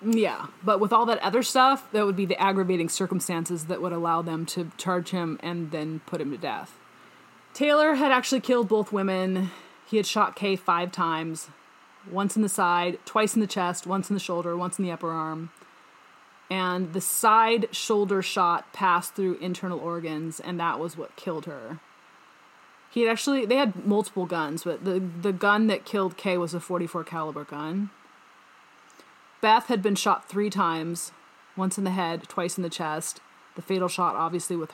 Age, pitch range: 30-49, 170-210 Hz